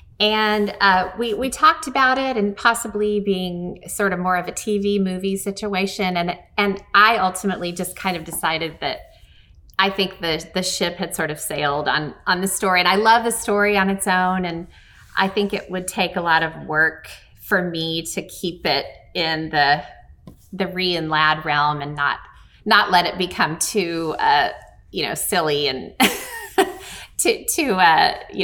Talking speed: 180 wpm